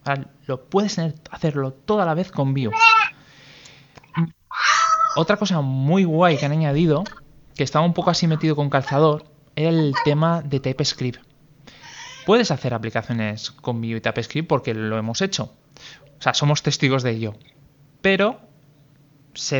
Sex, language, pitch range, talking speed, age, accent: male, Spanish, 125-150 Hz, 145 wpm, 20-39, Spanish